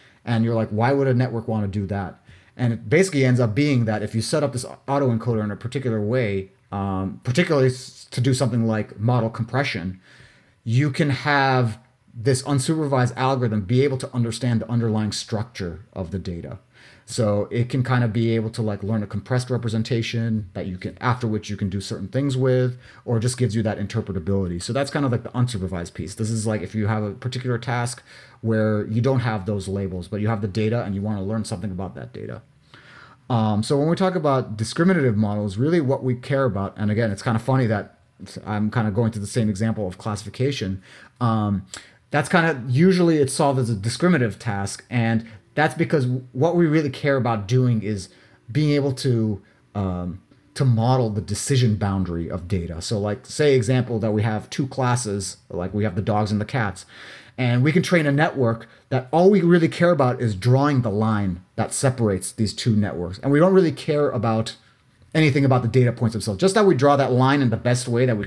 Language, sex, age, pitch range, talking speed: English, male, 30-49, 105-130 Hz, 215 wpm